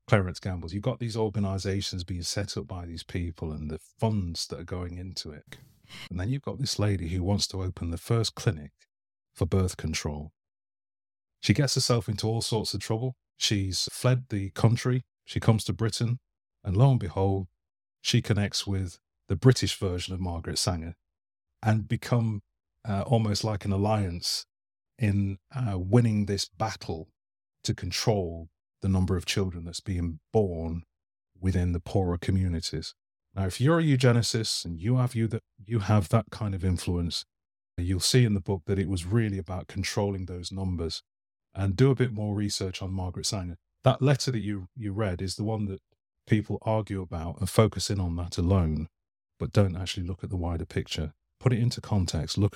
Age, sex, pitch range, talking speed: 30-49, male, 90-110 Hz, 180 wpm